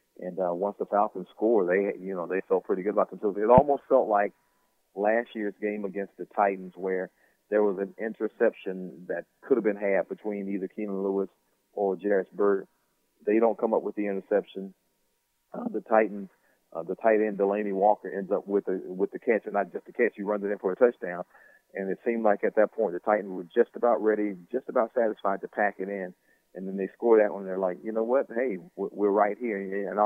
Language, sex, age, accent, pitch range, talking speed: English, male, 40-59, American, 95-110 Hz, 230 wpm